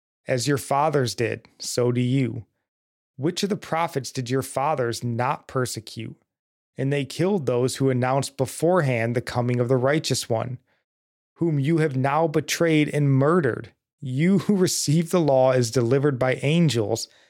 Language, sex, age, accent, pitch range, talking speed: English, male, 20-39, American, 125-155 Hz, 155 wpm